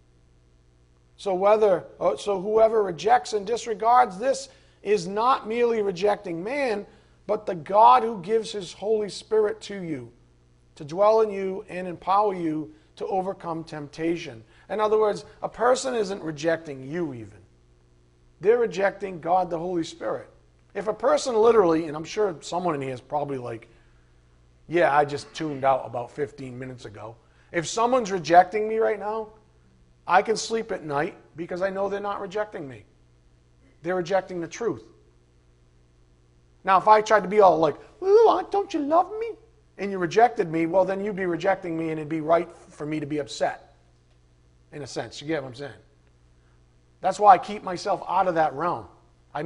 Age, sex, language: 40-59, male, English